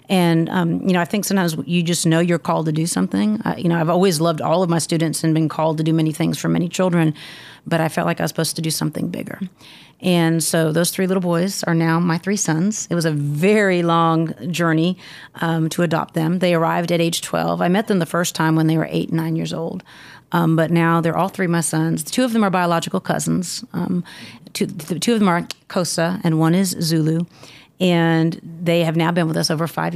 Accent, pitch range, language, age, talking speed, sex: American, 165-180 Hz, English, 30-49, 240 wpm, female